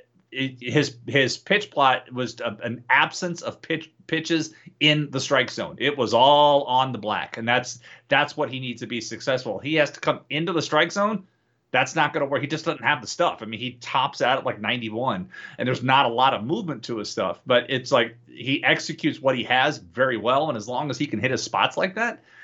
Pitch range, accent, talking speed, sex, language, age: 120-150 Hz, American, 235 wpm, male, English, 30-49